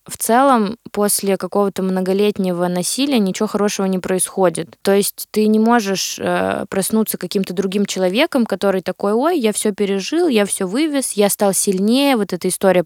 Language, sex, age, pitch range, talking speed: Russian, female, 20-39, 185-215 Hz, 165 wpm